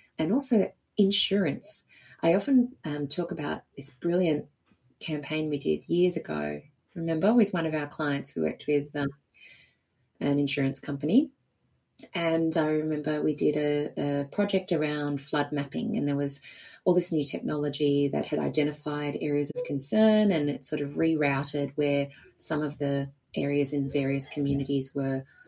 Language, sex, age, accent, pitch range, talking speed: English, female, 30-49, Australian, 140-165 Hz, 155 wpm